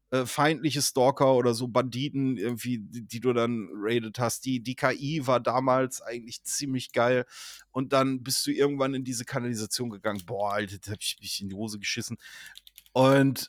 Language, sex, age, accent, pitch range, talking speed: German, male, 30-49, German, 120-140 Hz, 180 wpm